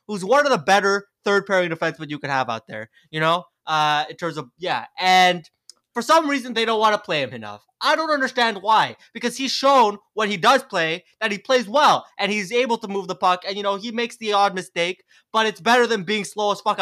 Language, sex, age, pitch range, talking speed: English, male, 20-39, 175-235 Hz, 245 wpm